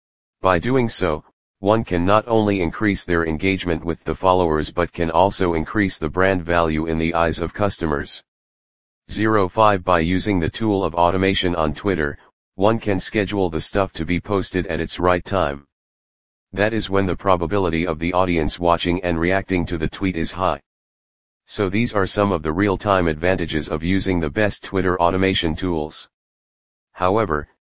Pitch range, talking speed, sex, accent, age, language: 80-100 Hz, 170 wpm, male, American, 40-59, English